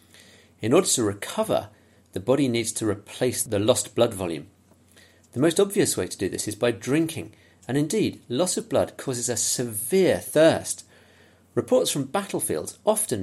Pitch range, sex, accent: 100-130 Hz, male, British